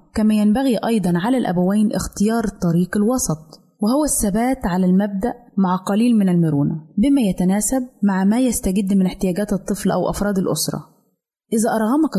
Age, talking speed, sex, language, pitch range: 20-39, 145 wpm, female, Arabic, 185-235 Hz